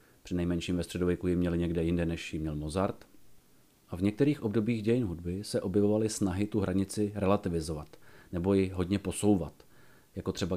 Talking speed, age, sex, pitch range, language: 165 wpm, 40-59, male, 90-100 Hz, Czech